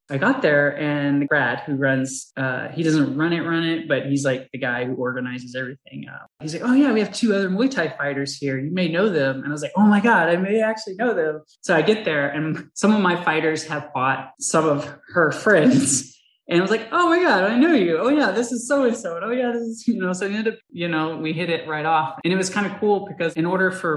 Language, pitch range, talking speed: English, 135-170 Hz, 275 wpm